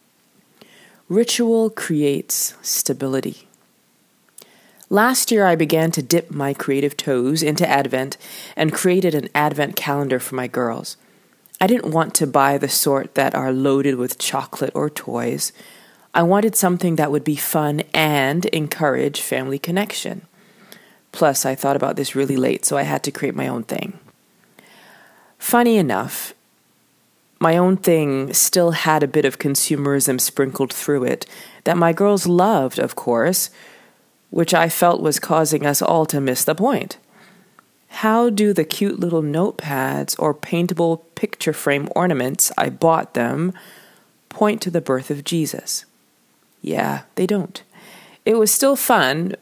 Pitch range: 140-185 Hz